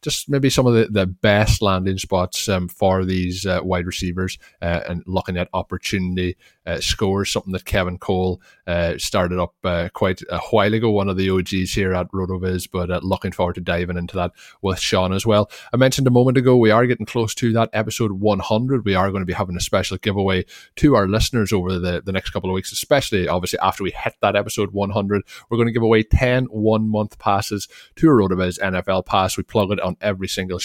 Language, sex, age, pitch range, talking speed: English, male, 20-39, 90-105 Hz, 225 wpm